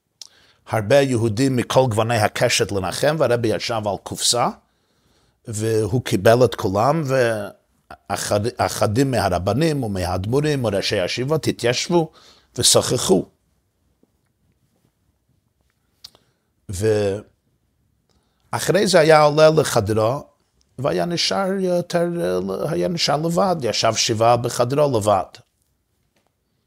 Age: 50-69